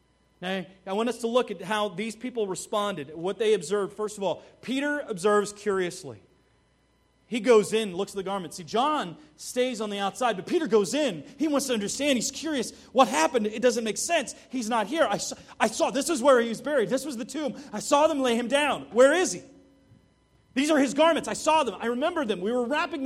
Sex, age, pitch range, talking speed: male, 30-49, 215-280 Hz, 225 wpm